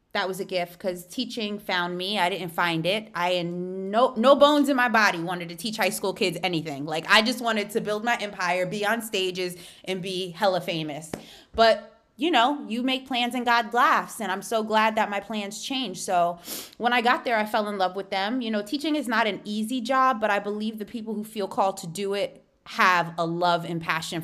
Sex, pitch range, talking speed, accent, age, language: female, 185-245 Hz, 235 wpm, American, 20-39, English